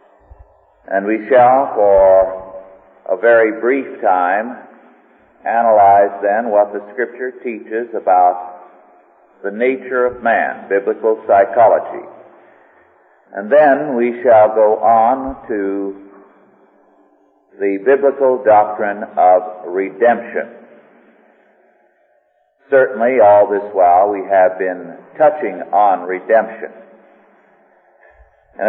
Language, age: English, 50-69